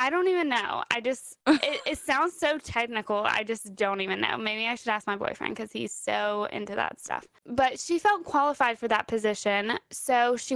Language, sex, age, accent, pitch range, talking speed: English, female, 10-29, American, 215-275 Hz, 210 wpm